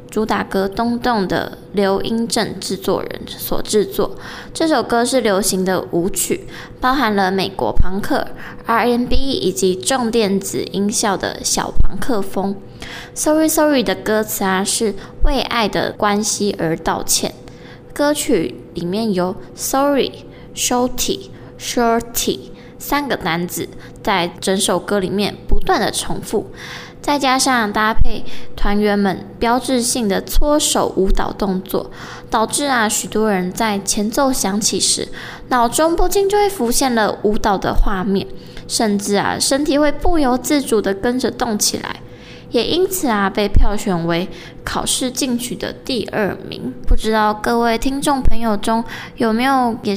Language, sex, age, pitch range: Chinese, female, 10-29, 200-250 Hz